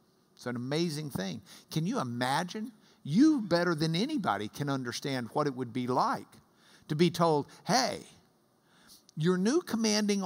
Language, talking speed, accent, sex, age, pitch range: English, 145 wpm, American, male, 50-69, 150-200 Hz